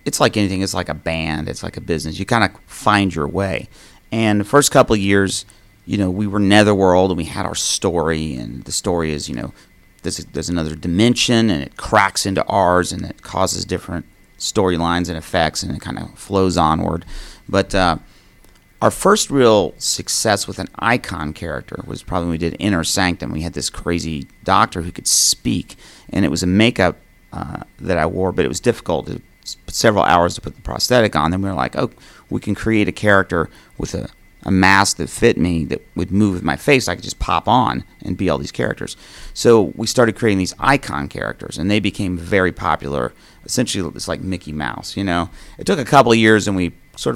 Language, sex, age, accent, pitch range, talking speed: English, male, 40-59, American, 85-105 Hz, 215 wpm